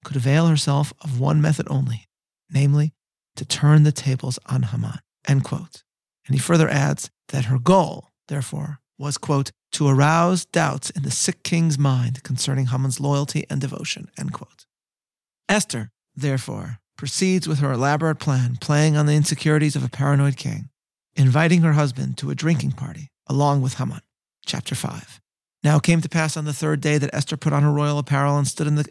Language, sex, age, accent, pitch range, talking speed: English, male, 40-59, American, 135-150 Hz, 180 wpm